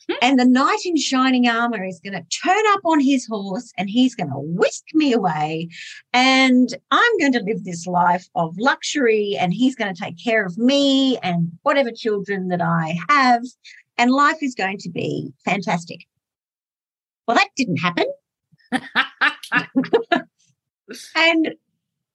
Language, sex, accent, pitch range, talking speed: English, female, Australian, 180-275 Hz, 150 wpm